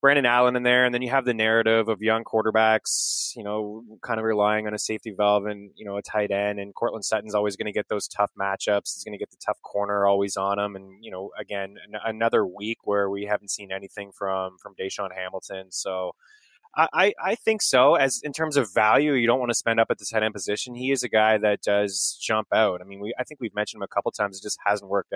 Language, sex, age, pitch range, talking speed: English, male, 20-39, 100-120 Hz, 260 wpm